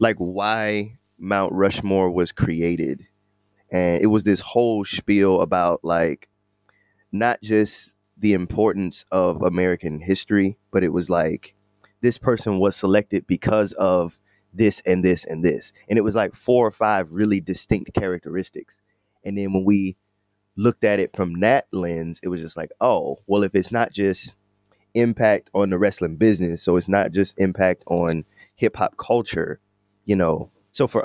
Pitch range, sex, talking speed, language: 90-105 Hz, male, 160 wpm, English